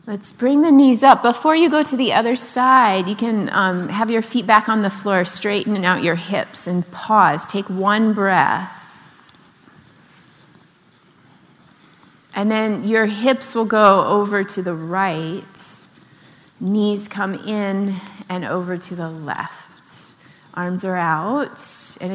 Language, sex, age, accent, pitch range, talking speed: English, female, 30-49, American, 180-235 Hz, 145 wpm